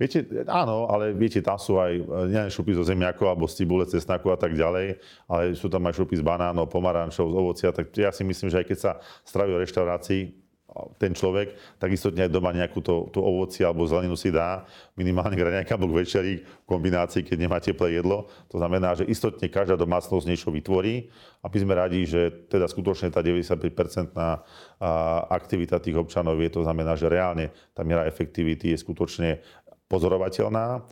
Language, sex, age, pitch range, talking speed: Slovak, male, 40-59, 85-95 Hz, 180 wpm